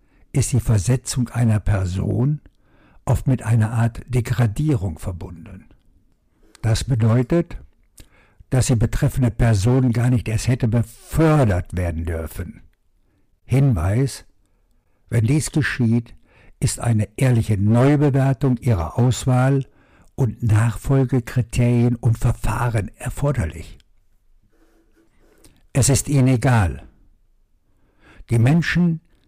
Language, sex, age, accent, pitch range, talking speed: German, male, 60-79, German, 100-125 Hz, 90 wpm